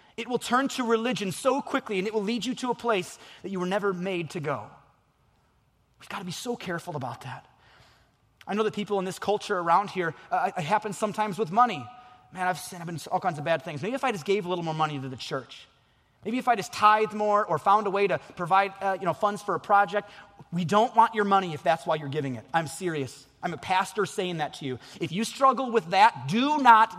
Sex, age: male, 30-49